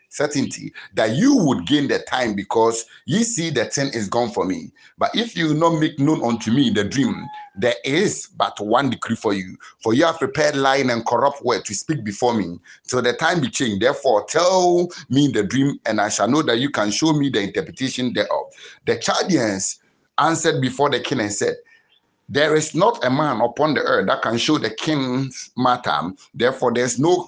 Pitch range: 120-160 Hz